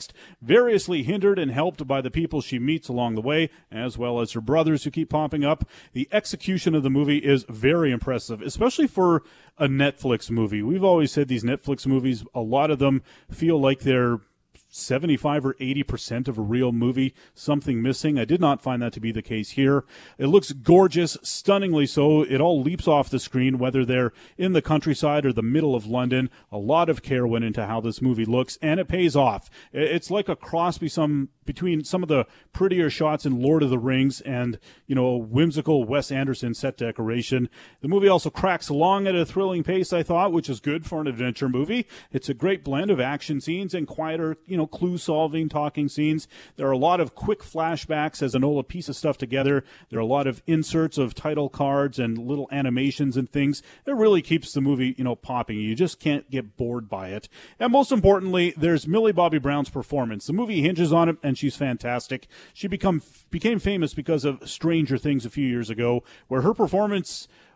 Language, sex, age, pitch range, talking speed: English, male, 30-49, 130-165 Hz, 205 wpm